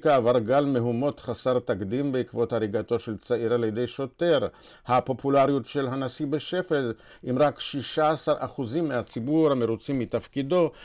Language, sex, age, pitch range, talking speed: Hebrew, male, 50-69, 125-170 Hz, 120 wpm